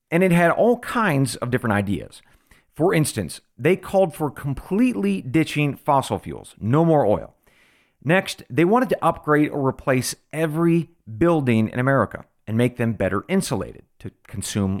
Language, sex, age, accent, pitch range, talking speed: English, male, 40-59, American, 110-165 Hz, 155 wpm